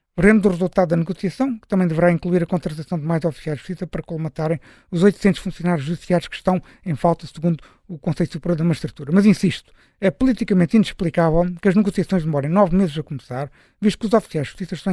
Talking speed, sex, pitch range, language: 210 wpm, male, 165-195 Hz, Portuguese